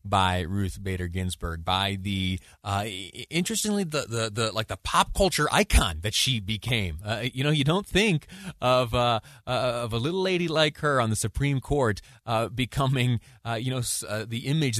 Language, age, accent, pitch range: English, 30-49, American, 100-125 Hz